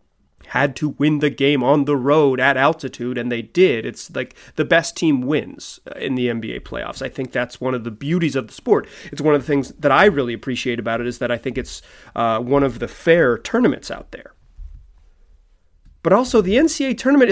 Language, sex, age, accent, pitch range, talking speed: English, male, 30-49, American, 125-180 Hz, 215 wpm